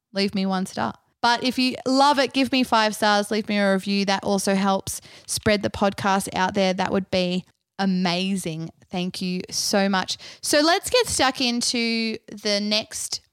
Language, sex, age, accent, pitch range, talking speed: English, female, 20-39, Australian, 185-235 Hz, 180 wpm